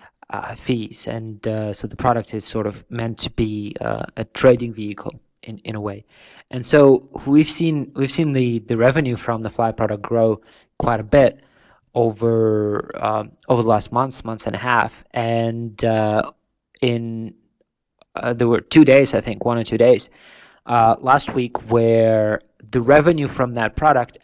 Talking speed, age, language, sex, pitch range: 175 wpm, 20-39, English, male, 110-125 Hz